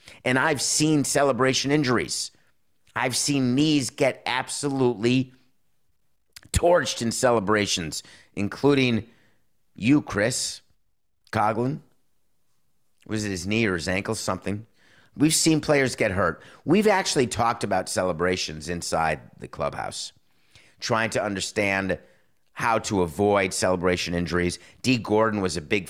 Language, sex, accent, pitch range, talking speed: English, male, American, 90-120 Hz, 120 wpm